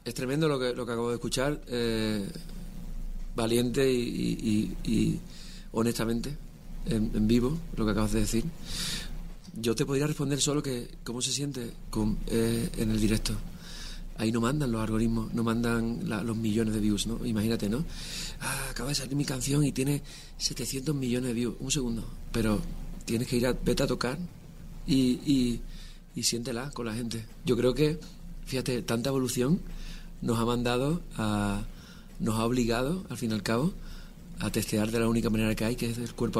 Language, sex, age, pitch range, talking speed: Spanish, male, 40-59, 110-130 Hz, 185 wpm